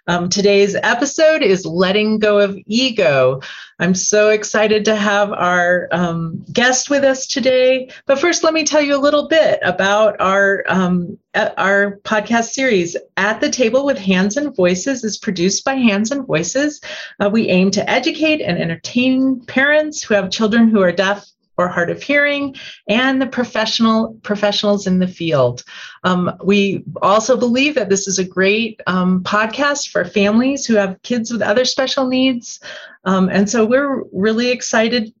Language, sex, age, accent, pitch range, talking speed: English, female, 40-59, American, 185-255 Hz, 165 wpm